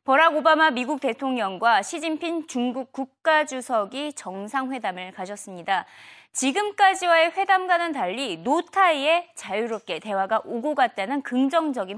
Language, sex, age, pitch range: Korean, female, 20-39, 215-325 Hz